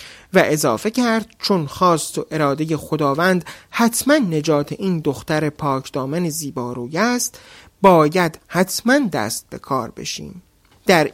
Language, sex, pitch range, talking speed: Persian, male, 155-235 Hz, 120 wpm